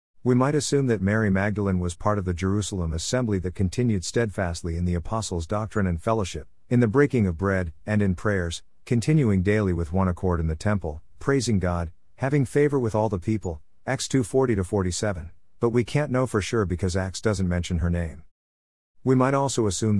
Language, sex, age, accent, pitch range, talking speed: English, male, 50-69, American, 85-115 Hz, 190 wpm